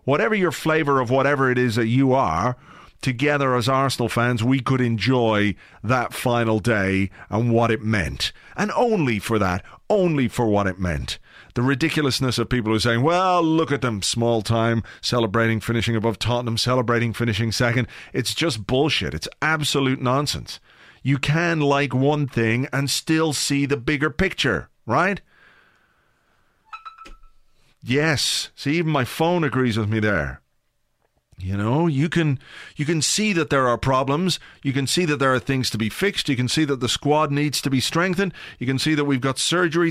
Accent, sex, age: British, male, 40-59